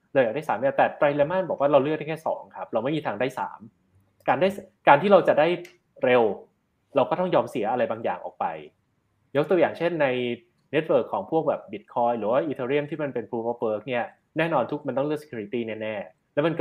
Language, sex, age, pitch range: Thai, male, 20-39, 120-170 Hz